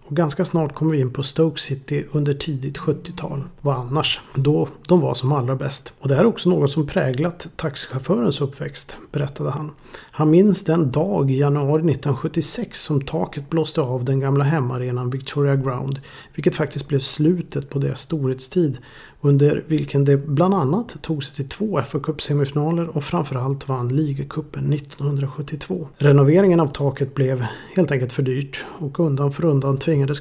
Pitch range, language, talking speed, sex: 135-155 Hz, Swedish, 165 wpm, male